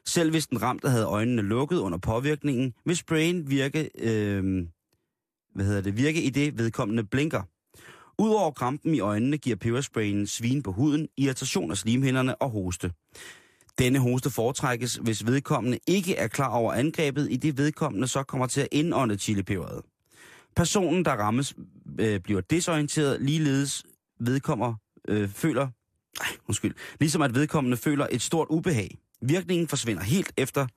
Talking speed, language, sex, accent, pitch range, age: 150 wpm, Danish, male, native, 110-145 Hz, 30-49